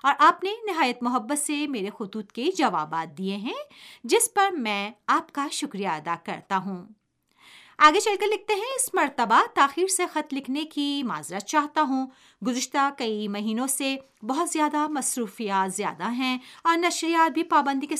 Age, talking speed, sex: 50-69, 165 wpm, female